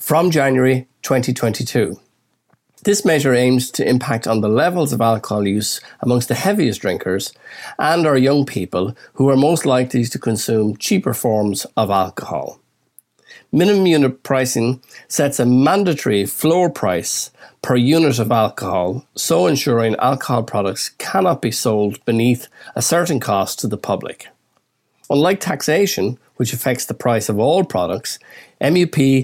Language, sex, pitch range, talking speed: English, male, 110-140 Hz, 140 wpm